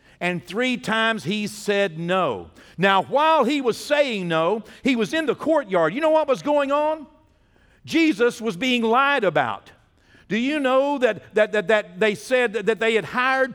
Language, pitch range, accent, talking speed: English, 195-260 Hz, American, 185 wpm